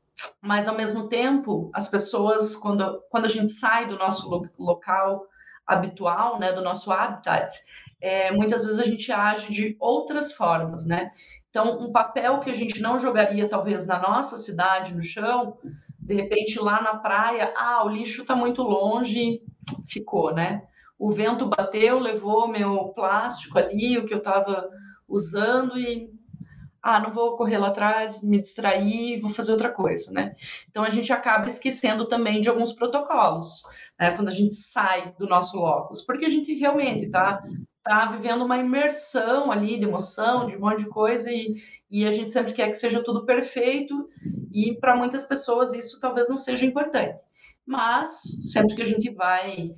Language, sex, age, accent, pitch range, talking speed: Portuguese, female, 30-49, Brazilian, 200-240 Hz, 170 wpm